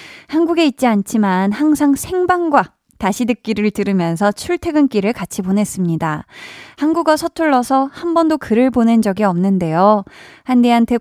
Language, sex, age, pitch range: Korean, female, 20-39, 200-280 Hz